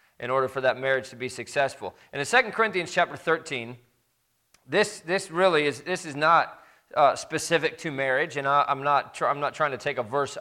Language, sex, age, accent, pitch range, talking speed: English, male, 40-59, American, 135-175 Hz, 215 wpm